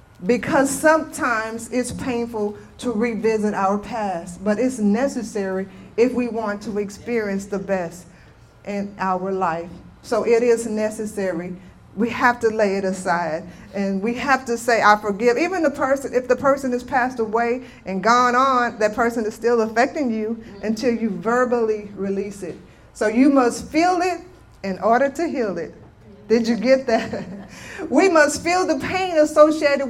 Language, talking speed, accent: English, 165 wpm, American